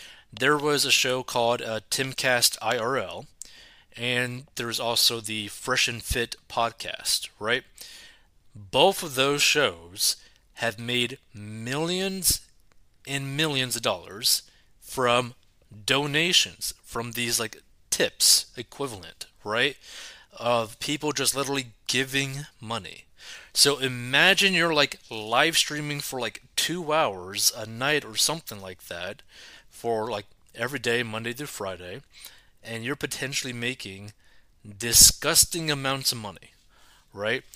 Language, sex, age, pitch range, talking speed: English, male, 30-49, 115-145 Hz, 120 wpm